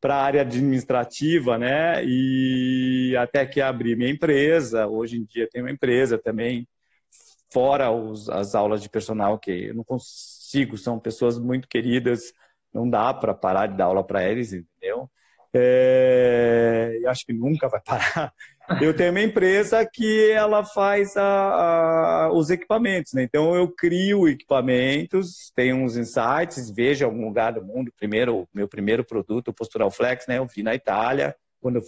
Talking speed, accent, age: 165 wpm, Brazilian, 40-59